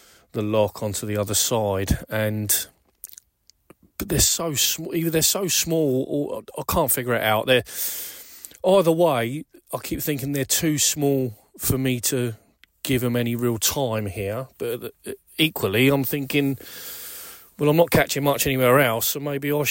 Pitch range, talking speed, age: 105-140 Hz, 160 wpm, 30-49